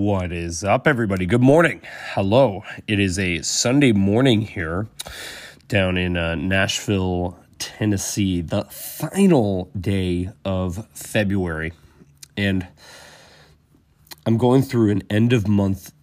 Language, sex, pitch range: English, male, 90-110 Hz